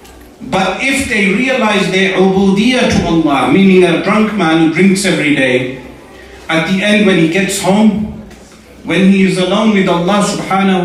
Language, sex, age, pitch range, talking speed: English, male, 40-59, 170-210 Hz, 160 wpm